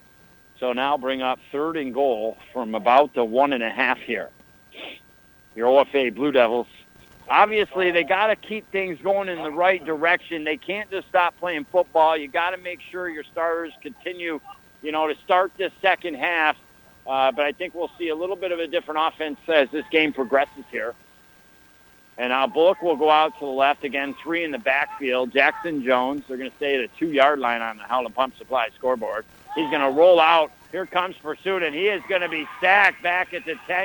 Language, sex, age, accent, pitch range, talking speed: English, male, 60-79, American, 135-180 Hz, 200 wpm